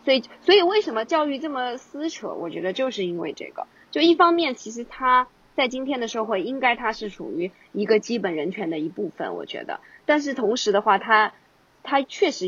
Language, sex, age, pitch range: Chinese, female, 20-39, 195-275 Hz